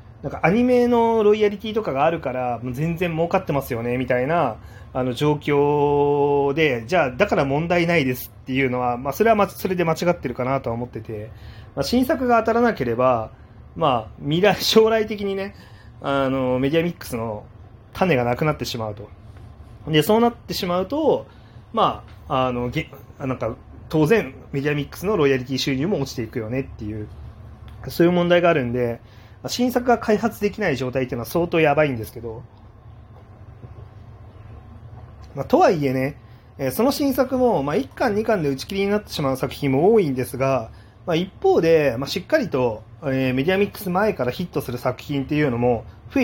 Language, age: Japanese, 30-49